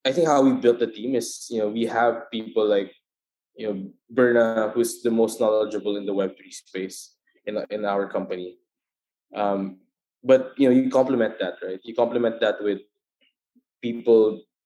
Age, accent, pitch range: 20-39, Filipino, 105-130 Hz